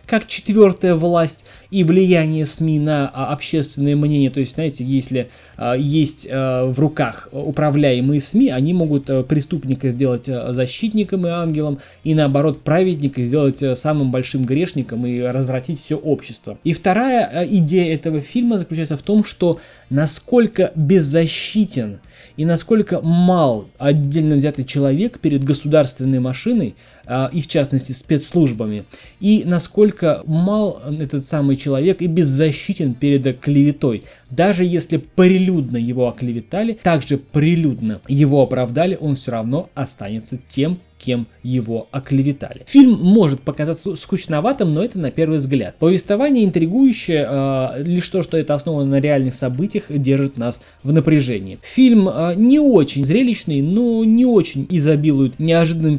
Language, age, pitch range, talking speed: Russian, 20-39, 135-180 Hz, 130 wpm